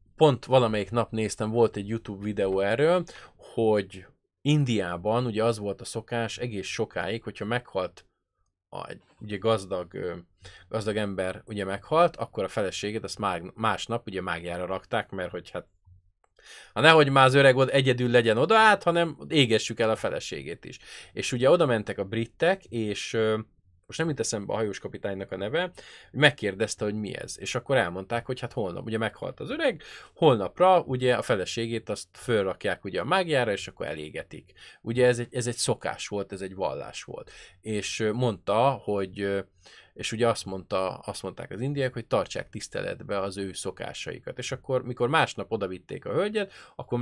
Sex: male